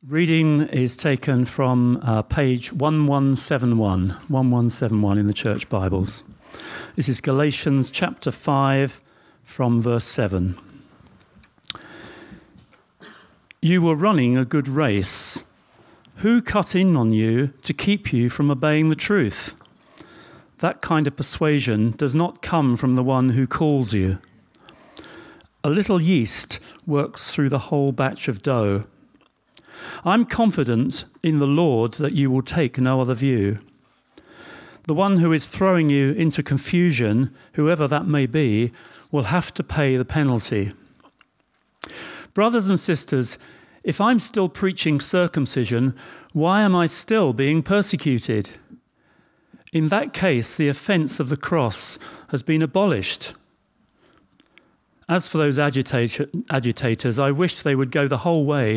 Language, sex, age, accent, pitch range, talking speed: English, male, 50-69, British, 120-160 Hz, 130 wpm